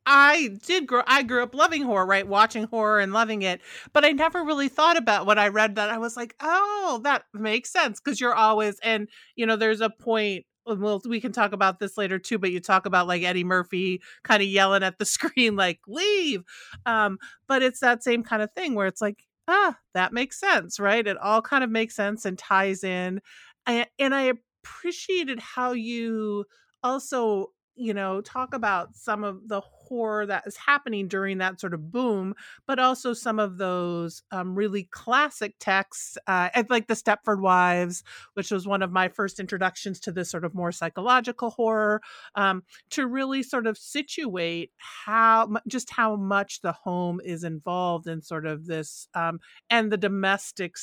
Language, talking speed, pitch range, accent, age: English, 190 wpm, 190-245 Hz, American, 40-59